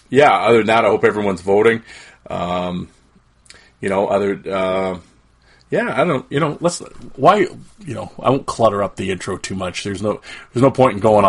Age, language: 30-49, English